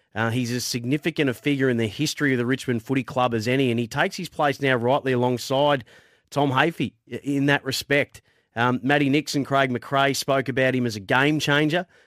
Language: English